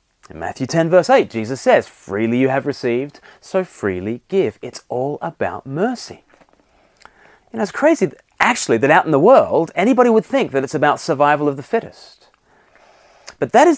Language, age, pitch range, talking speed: English, 30-49, 125-210 Hz, 170 wpm